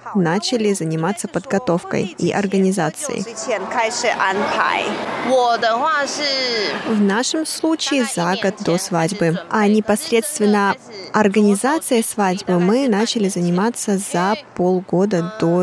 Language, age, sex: Russian, 20-39, female